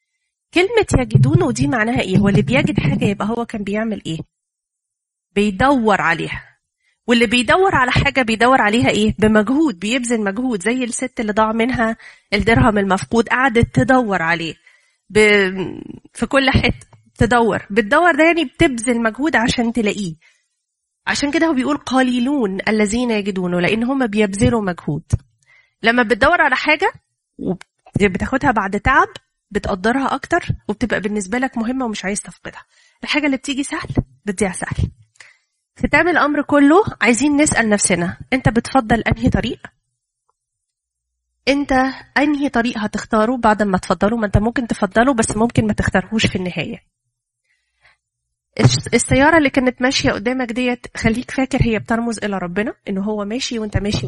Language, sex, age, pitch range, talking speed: Arabic, female, 30-49, 190-260 Hz, 140 wpm